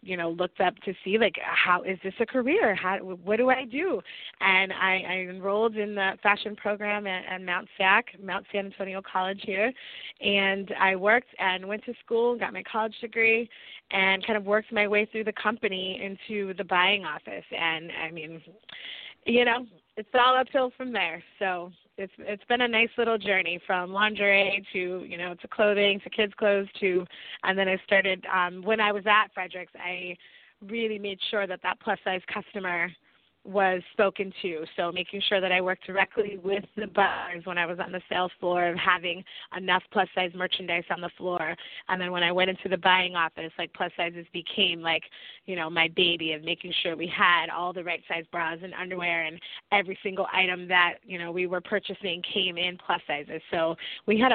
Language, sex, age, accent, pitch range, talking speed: English, female, 20-39, American, 180-210 Hz, 195 wpm